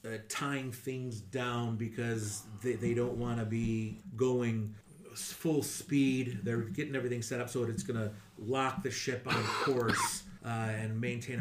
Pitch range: 105-120 Hz